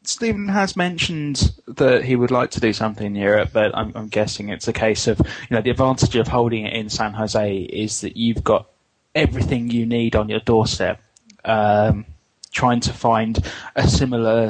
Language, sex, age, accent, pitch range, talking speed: English, male, 20-39, British, 110-130 Hz, 190 wpm